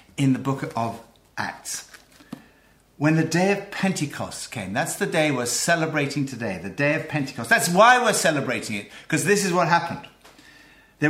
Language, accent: English, British